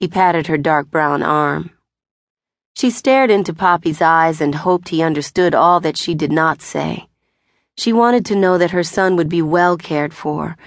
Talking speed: 185 wpm